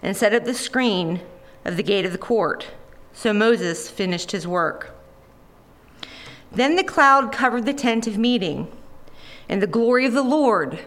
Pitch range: 190-250 Hz